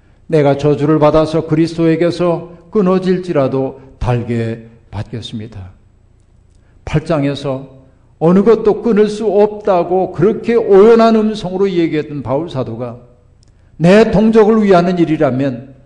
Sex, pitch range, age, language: male, 115-160 Hz, 50-69, Korean